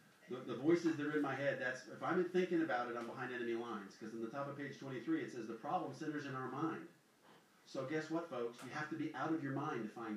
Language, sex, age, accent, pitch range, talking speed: English, male, 40-59, American, 140-175 Hz, 270 wpm